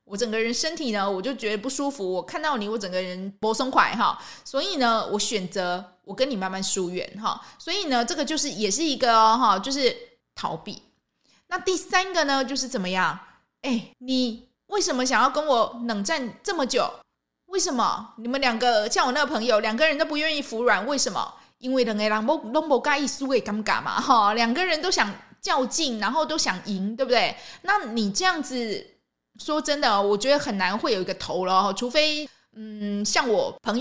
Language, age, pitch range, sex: Chinese, 20-39, 205-285 Hz, female